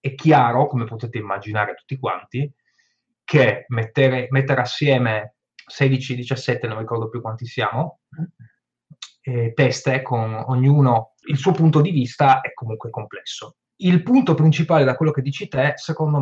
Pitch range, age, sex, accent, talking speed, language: 120-155 Hz, 20-39, male, native, 140 wpm, Italian